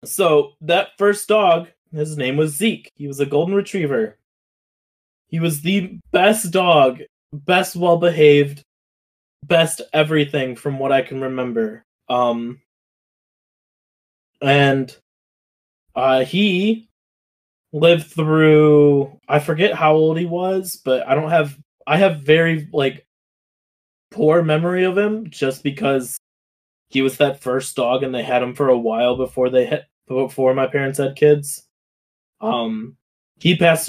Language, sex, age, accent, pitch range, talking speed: English, male, 20-39, American, 135-165 Hz, 135 wpm